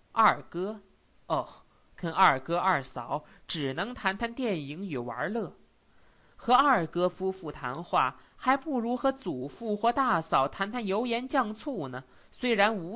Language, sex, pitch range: Chinese, male, 150-215 Hz